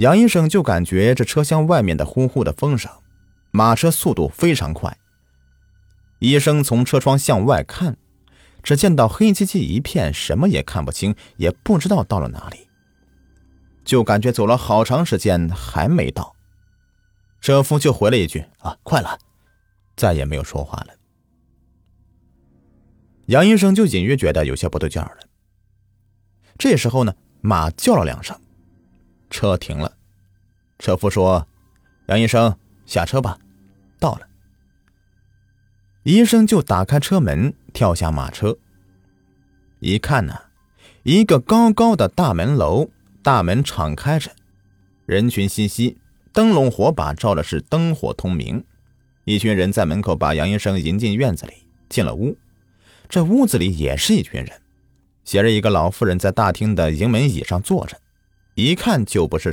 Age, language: 30-49, Chinese